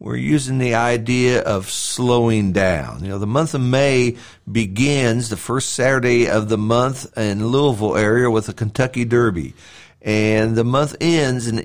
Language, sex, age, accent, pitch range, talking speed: English, male, 50-69, American, 115-145 Hz, 165 wpm